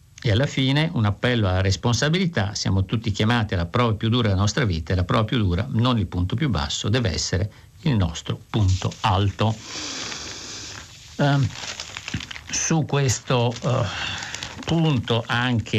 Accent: native